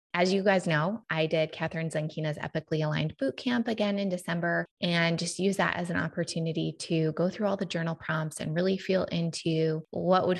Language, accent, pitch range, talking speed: English, American, 160-195 Hz, 195 wpm